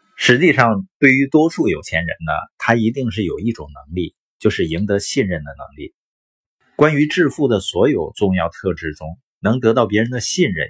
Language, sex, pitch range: Chinese, male, 100-135 Hz